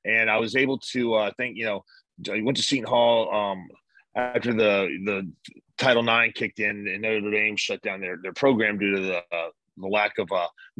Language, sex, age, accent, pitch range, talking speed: English, male, 30-49, American, 100-120 Hz, 215 wpm